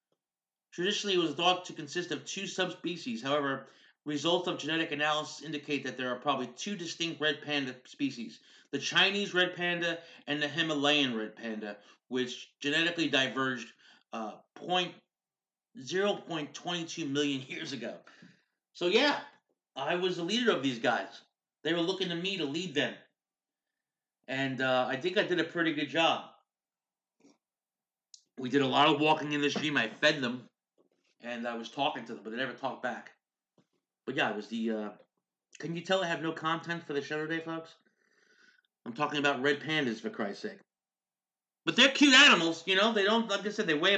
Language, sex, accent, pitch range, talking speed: English, male, American, 140-190 Hz, 175 wpm